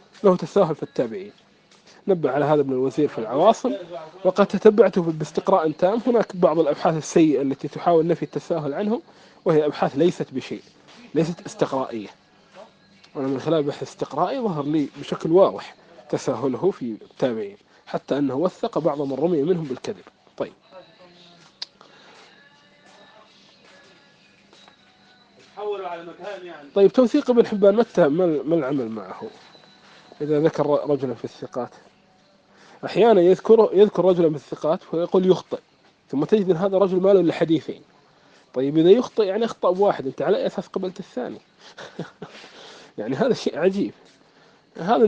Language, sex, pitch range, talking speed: Arabic, male, 150-200 Hz, 130 wpm